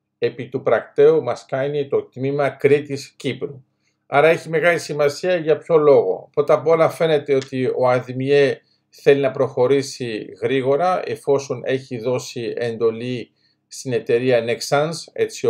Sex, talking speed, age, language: male, 130 wpm, 50-69, Greek